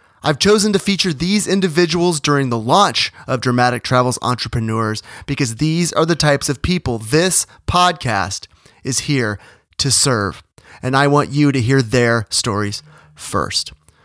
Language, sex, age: English, male, 30-49